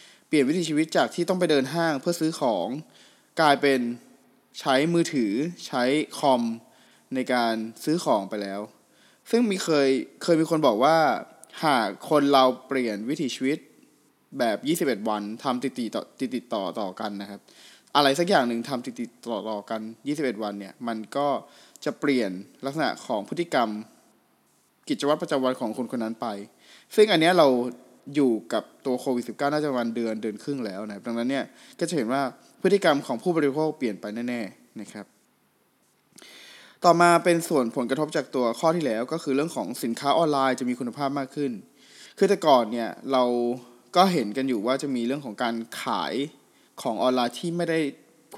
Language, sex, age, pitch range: Thai, male, 20-39, 115-155 Hz